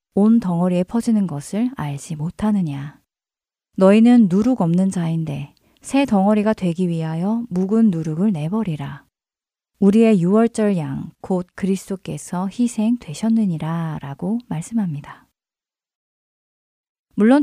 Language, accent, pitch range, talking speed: English, Korean, 170-220 Hz, 85 wpm